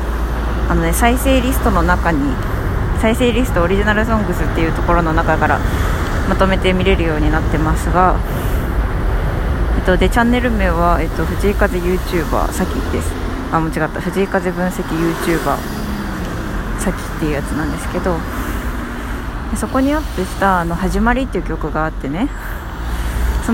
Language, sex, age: Japanese, female, 20-39